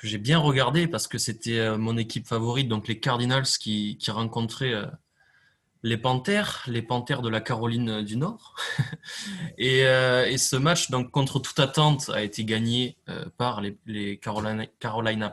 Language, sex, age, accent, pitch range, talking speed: French, male, 20-39, French, 115-155 Hz, 160 wpm